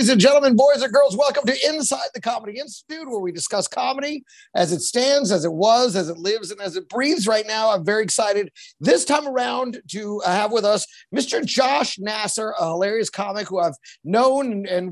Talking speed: 205 wpm